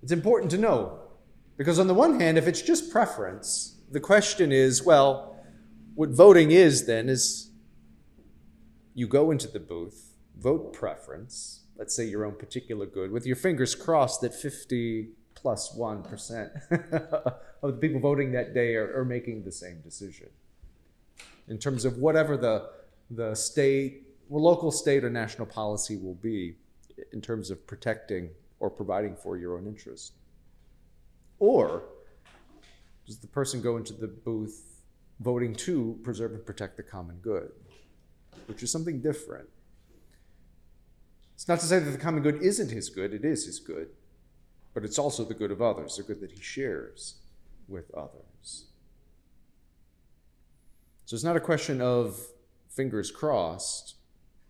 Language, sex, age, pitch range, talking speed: English, male, 30-49, 105-150 Hz, 150 wpm